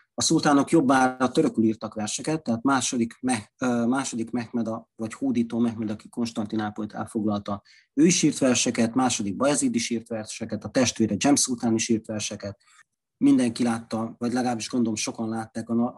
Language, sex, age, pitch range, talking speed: Hungarian, male, 30-49, 110-130 Hz, 150 wpm